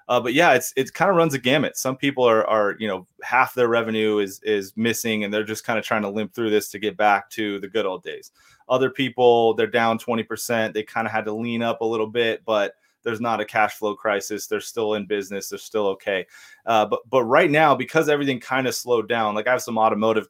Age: 30-49